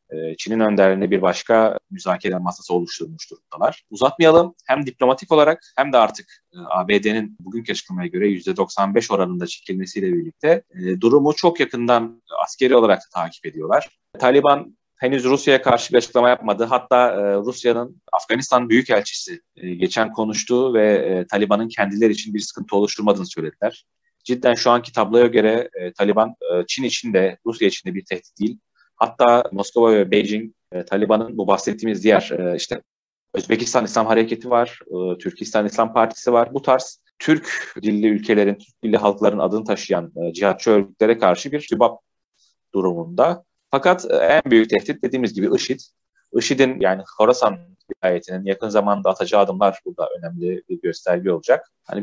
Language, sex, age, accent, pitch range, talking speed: Turkish, male, 30-49, native, 100-135 Hz, 145 wpm